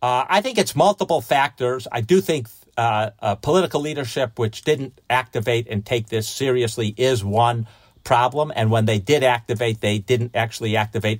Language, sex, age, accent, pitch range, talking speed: English, male, 50-69, American, 110-135 Hz, 170 wpm